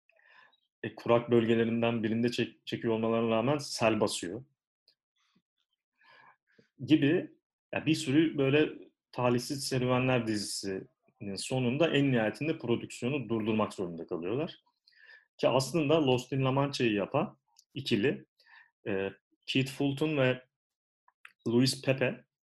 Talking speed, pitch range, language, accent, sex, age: 100 wpm, 115-145 Hz, Turkish, native, male, 40-59